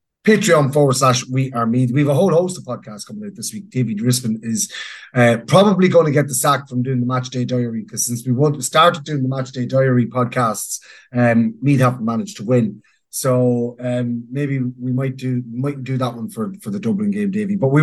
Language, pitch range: English, 125-160 Hz